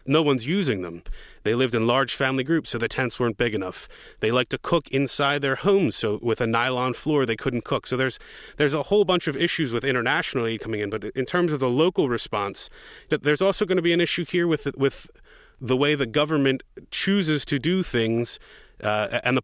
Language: English